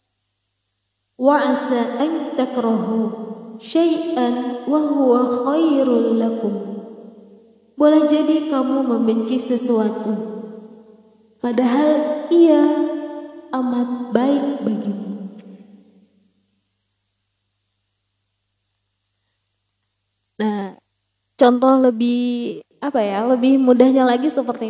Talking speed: 50 wpm